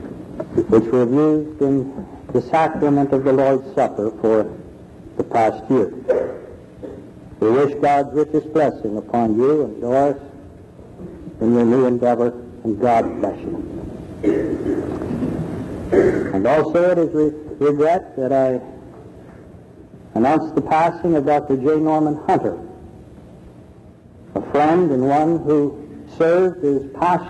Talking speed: 130 wpm